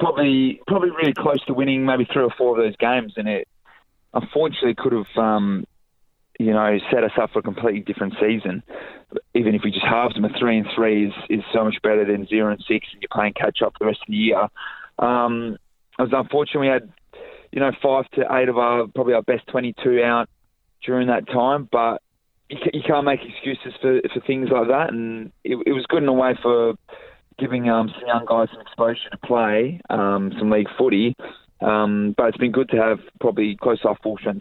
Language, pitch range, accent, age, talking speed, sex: English, 105-130 Hz, Australian, 20-39, 215 wpm, male